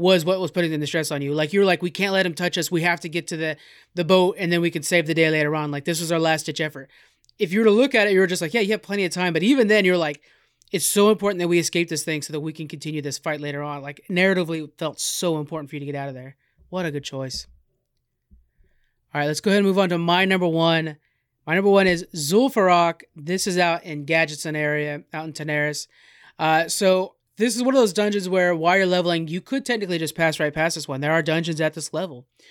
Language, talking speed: English, 280 wpm